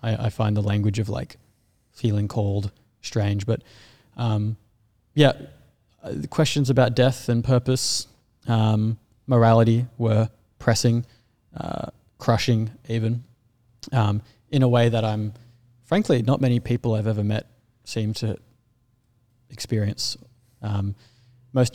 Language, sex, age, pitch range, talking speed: English, male, 20-39, 105-120 Hz, 120 wpm